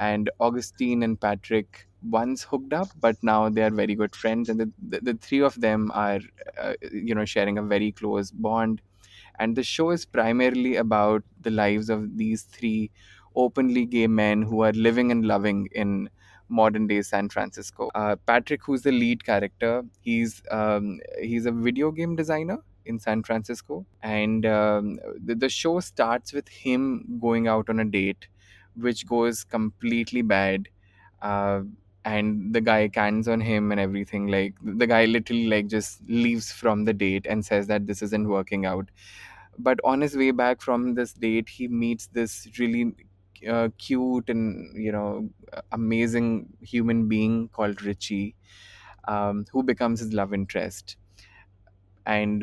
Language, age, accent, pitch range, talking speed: English, 20-39, Indian, 100-115 Hz, 160 wpm